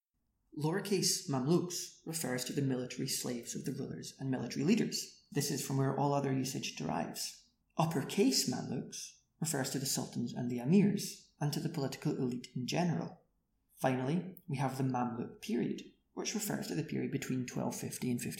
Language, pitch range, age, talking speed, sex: English, 130-175 Hz, 30-49, 165 wpm, male